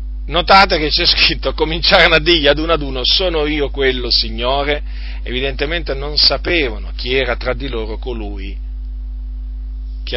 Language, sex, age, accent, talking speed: Italian, male, 40-59, native, 150 wpm